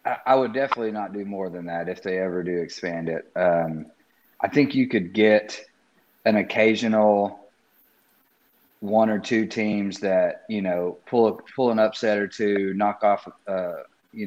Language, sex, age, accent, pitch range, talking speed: English, male, 40-59, American, 90-110 Hz, 170 wpm